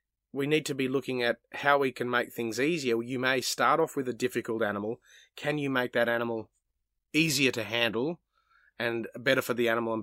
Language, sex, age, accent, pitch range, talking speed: English, male, 30-49, Australian, 110-130 Hz, 205 wpm